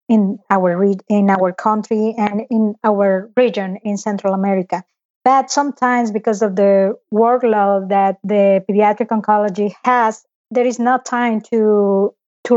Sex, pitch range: female, 200-230 Hz